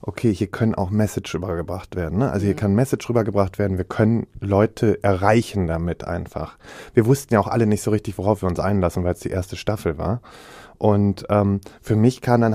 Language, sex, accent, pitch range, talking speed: German, male, German, 105-125 Hz, 210 wpm